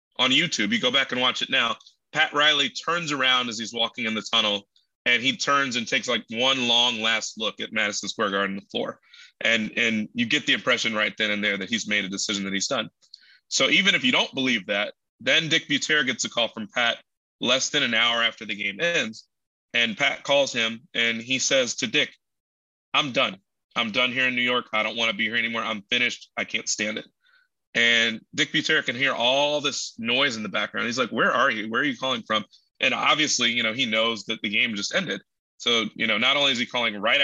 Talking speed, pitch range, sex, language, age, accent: 235 wpm, 110-145 Hz, male, English, 30-49, American